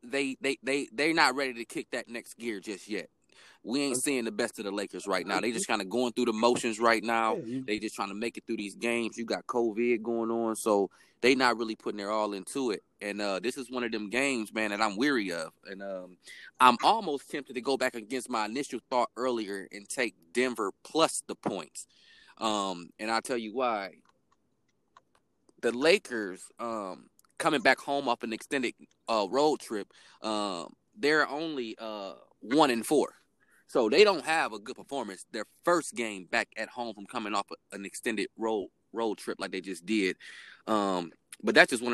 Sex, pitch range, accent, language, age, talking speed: male, 100-120 Hz, American, English, 20-39, 205 wpm